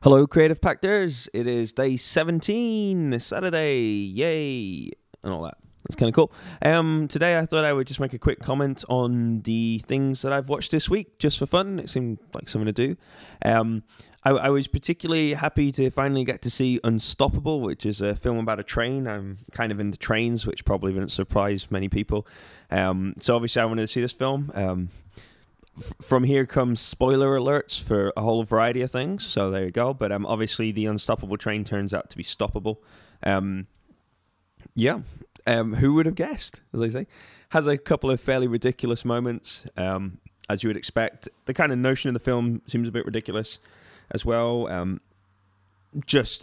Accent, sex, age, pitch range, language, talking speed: British, male, 20-39, 100-130 Hz, English, 190 wpm